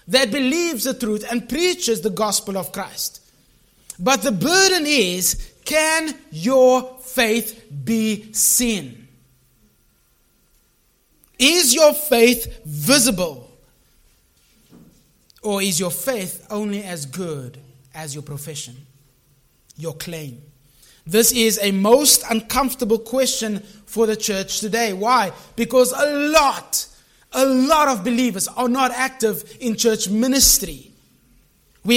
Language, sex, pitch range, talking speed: English, male, 185-255 Hz, 115 wpm